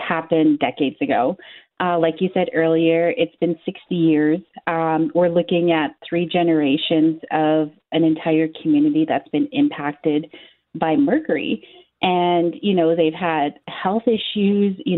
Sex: female